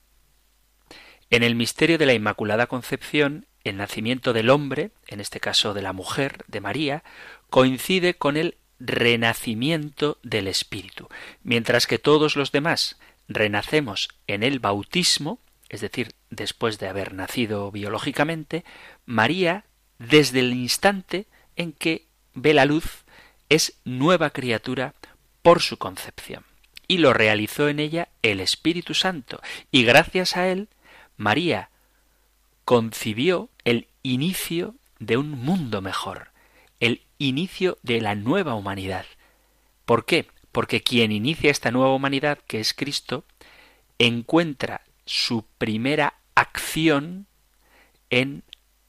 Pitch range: 110-150 Hz